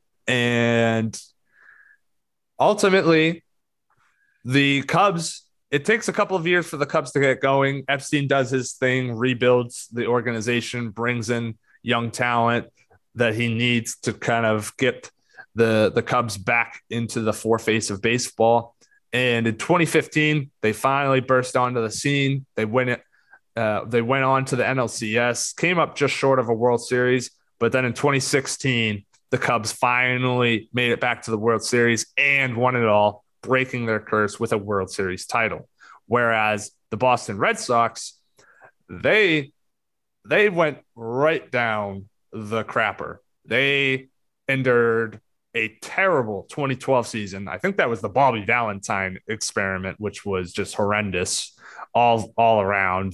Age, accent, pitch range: 20-39, American, 110-130 Hz